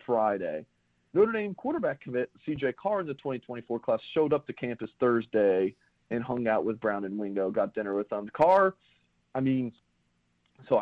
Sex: male